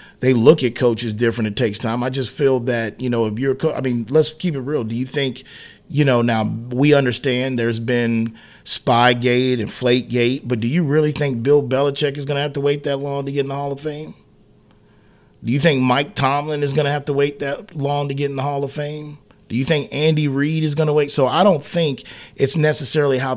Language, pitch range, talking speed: English, 125-145 Hz, 245 wpm